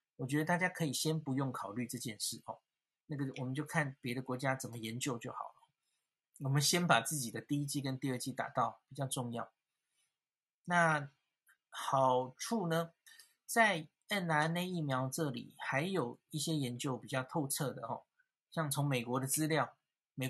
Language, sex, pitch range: Chinese, male, 130-165 Hz